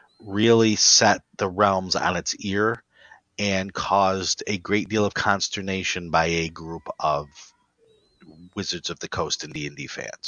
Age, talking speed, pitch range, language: 40-59, 160 wpm, 85-105 Hz, English